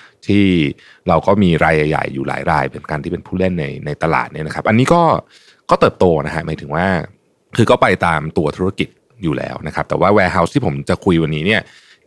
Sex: male